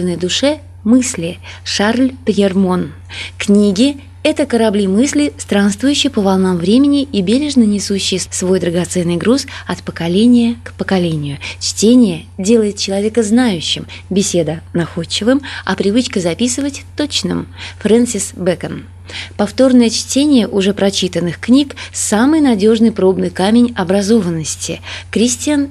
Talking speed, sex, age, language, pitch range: 105 wpm, female, 20-39, Russian, 170-235 Hz